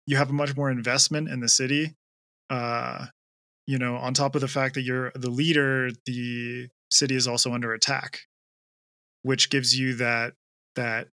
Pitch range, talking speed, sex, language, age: 120-135 Hz, 170 wpm, male, English, 20-39